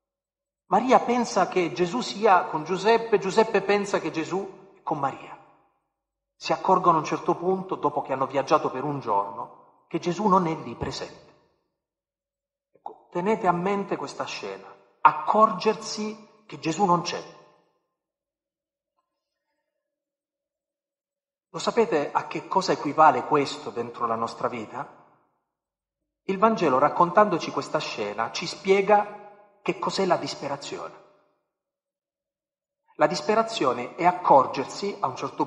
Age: 40-59